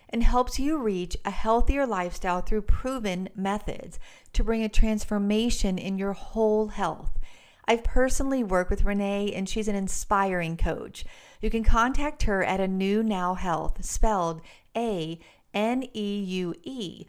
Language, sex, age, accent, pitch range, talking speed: English, female, 40-59, American, 195-240 Hz, 135 wpm